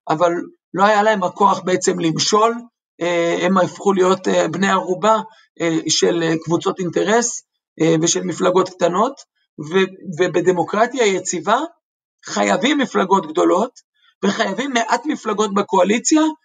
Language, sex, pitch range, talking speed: Hebrew, male, 175-230 Hz, 100 wpm